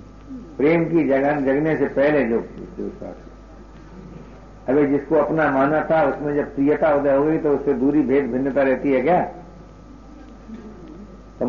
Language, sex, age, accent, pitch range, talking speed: Hindi, male, 60-79, native, 135-170 Hz, 135 wpm